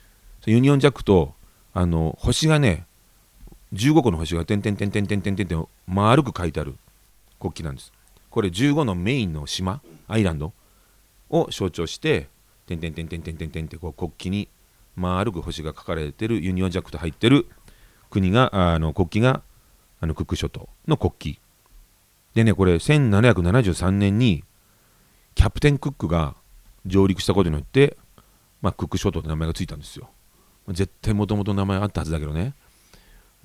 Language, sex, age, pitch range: Japanese, male, 40-59, 85-110 Hz